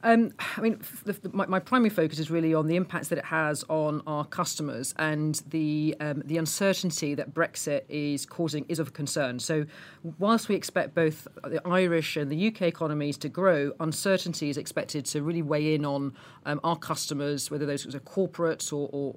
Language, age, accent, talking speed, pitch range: English, 40-59, British, 195 wpm, 150-175 Hz